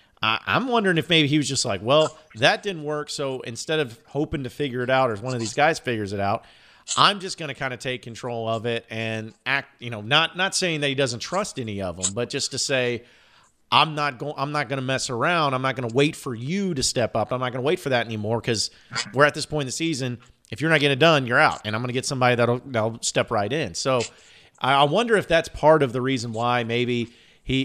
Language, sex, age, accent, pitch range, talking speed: English, male, 40-59, American, 120-150 Hz, 260 wpm